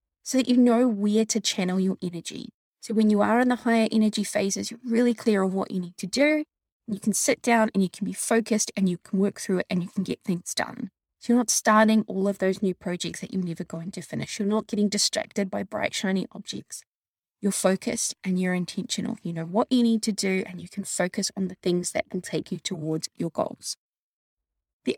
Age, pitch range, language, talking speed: 20-39, 185-230 Hz, English, 235 wpm